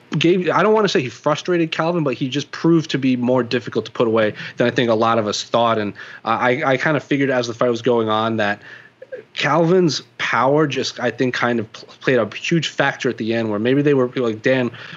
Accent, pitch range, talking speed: American, 115-140 Hz, 250 wpm